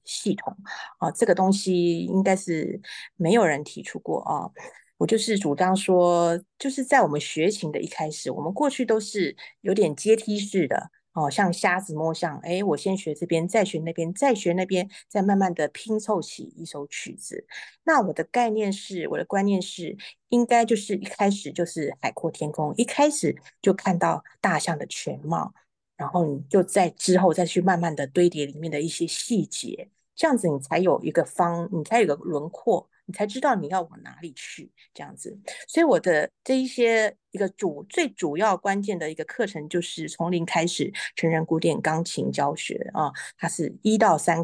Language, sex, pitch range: Chinese, female, 165-215 Hz